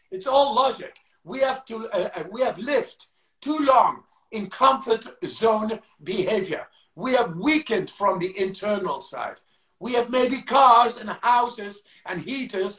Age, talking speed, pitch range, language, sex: 50-69, 145 wpm, 185-245 Hz, English, male